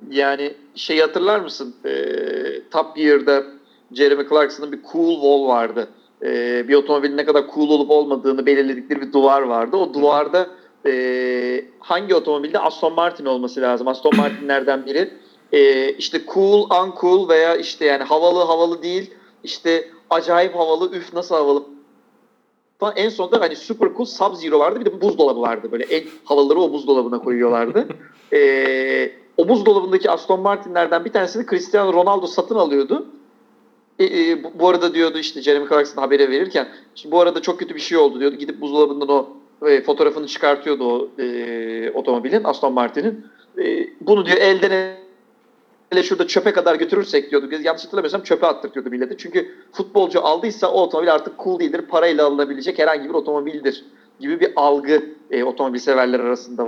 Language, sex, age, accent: Turkish, male, 40-59, native